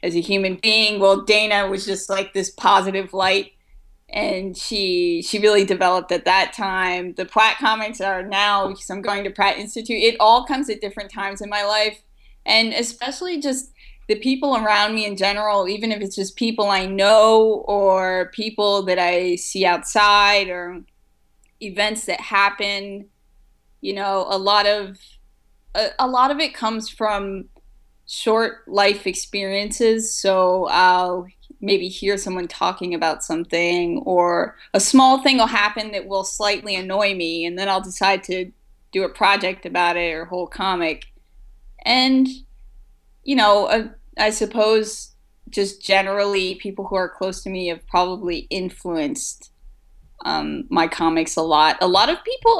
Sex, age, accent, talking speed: female, 20-39, American, 160 wpm